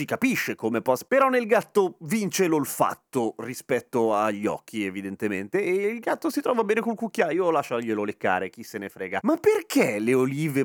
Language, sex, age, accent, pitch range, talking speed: Italian, male, 30-49, native, 130-195 Hz, 170 wpm